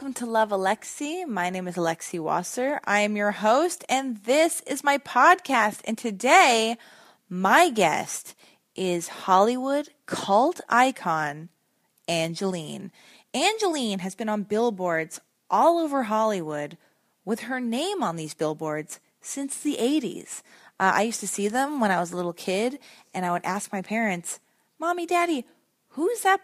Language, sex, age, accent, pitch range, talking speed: English, female, 20-39, American, 200-285 Hz, 150 wpm